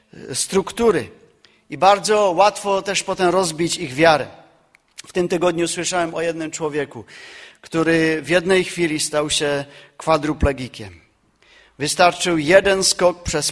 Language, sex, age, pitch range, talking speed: Czech, male, 40-59, 135-175 Hz, 120 wpm